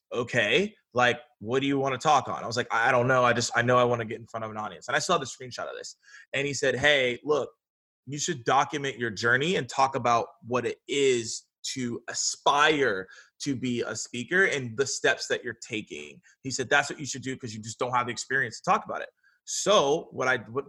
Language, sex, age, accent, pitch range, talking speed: English, male, 20-39, American, 125-155 Hz, 245 wpm